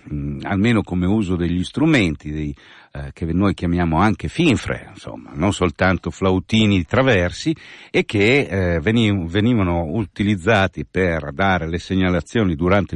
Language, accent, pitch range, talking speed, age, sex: Italian, native, 80-105 Hz, 135 wpm, 50-69, male